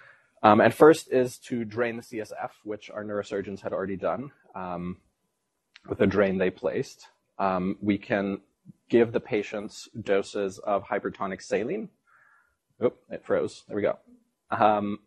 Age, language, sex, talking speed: 30-49, English, male, 145 wpm